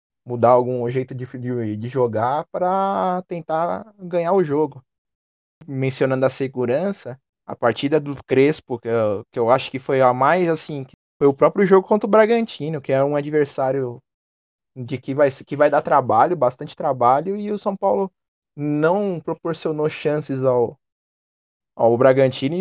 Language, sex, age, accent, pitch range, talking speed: Portuguese, male, 20-39, Brazilian, 125-160 Hz, 160 wpm